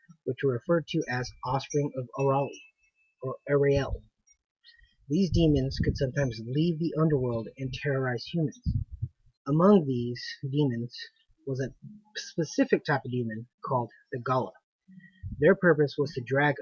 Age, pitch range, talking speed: 30-49, 130-165 Hz, 135 wpm